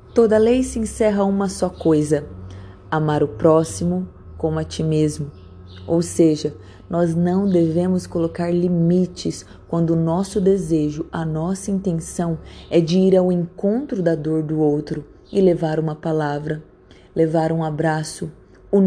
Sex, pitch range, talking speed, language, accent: female, 155-195 Hz, 145 wpm, Portuguese, Brazilian